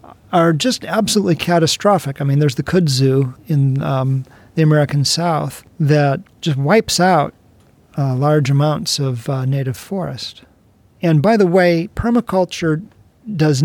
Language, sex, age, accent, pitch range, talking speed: English, male, 40-59, American, 140-175 Hz, 135 wpm